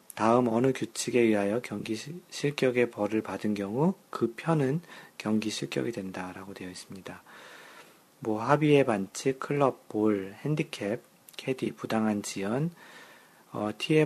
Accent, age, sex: native, 40-59, male